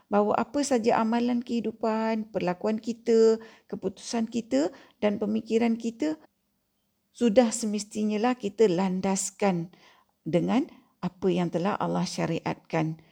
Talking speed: 105 wpm